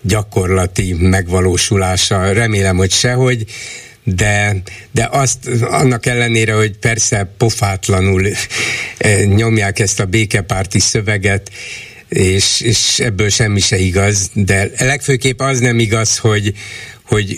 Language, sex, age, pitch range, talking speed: Hungarian, male, 60-79, 100-125 Hz, 105 wpm